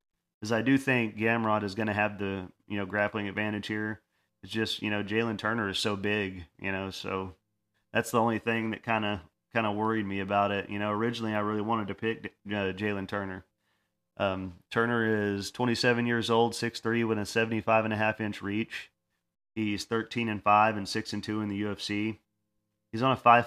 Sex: male